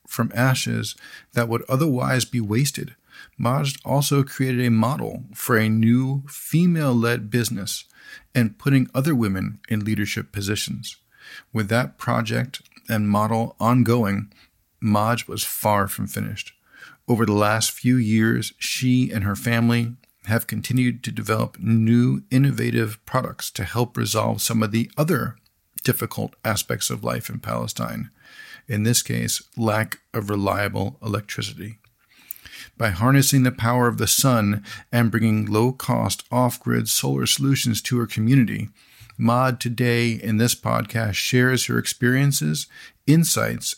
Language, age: English, 40-59